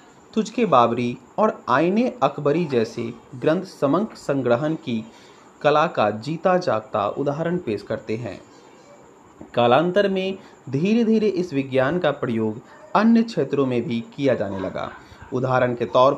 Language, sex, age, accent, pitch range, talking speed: Hindi, male, 30-49, native, 120-180 Hz, 135 wpm